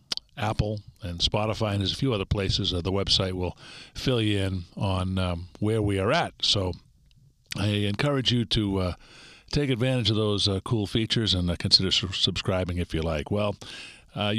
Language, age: English, 50-69